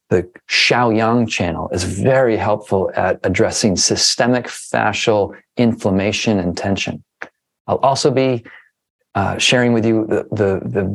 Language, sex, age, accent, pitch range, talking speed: English, male, 40-59, American, 100-120 Hz, 125 wpm